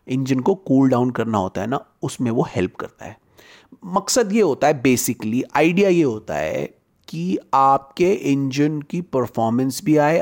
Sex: male